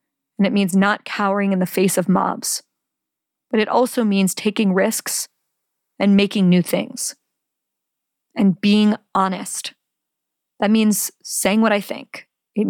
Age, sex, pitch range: 40-59, female, 185-210 Hz